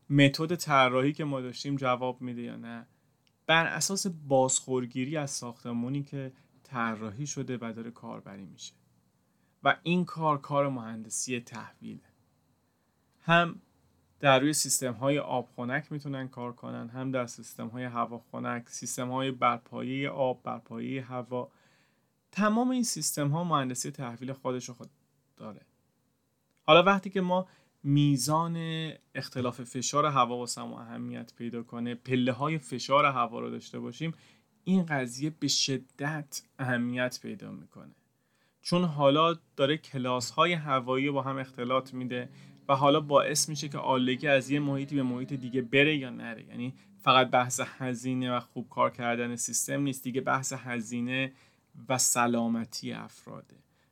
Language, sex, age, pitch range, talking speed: Persian, male, 30-49, 125-145 Hz, 135 wpm